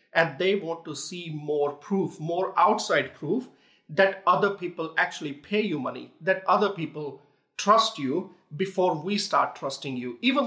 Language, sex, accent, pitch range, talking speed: English, male, Indian, 145-190 Hz, 160 wpm